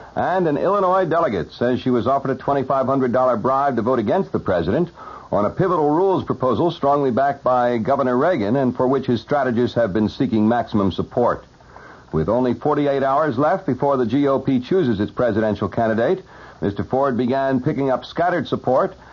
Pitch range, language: 110-135 Hz, English